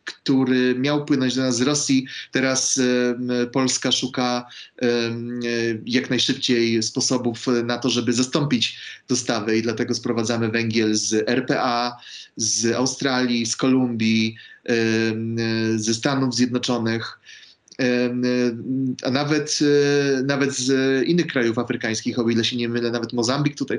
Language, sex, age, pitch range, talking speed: Polish, male, 30-49, 120-140 Hz, 115 wpm